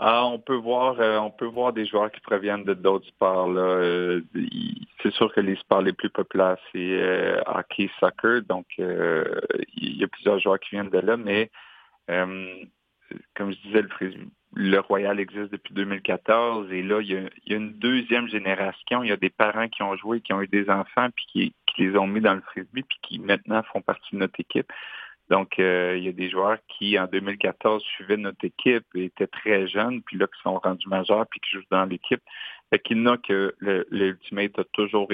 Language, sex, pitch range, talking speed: French, male, 95-110 Hz, 220 wpm